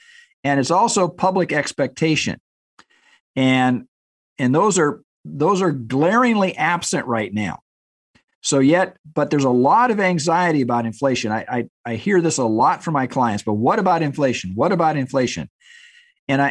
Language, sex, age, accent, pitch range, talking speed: English, male, 50-69, American, 125-180 Hz, 155 wpm